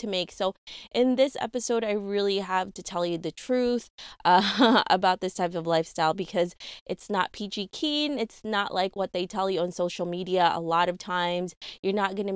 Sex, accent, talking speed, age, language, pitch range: female, American, 210 wpm, 20-39, English, 175-215 Hz